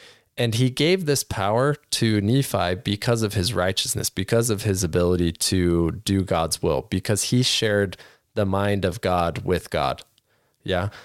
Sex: male